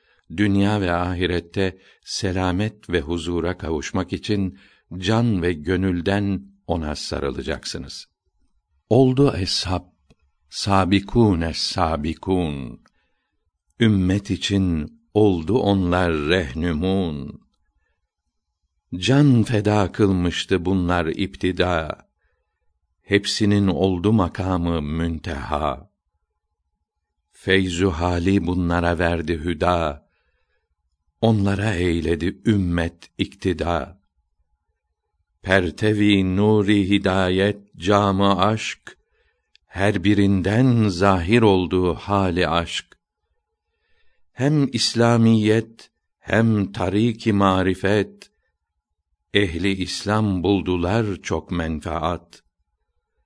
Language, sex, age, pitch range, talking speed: Turkish, male, 60-79, 80-100 Hz, 70 wpm